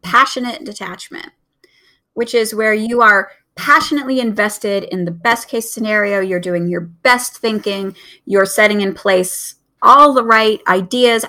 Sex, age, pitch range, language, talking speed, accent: female, 30-49, 205-260 Hz, English, 145 wpm, American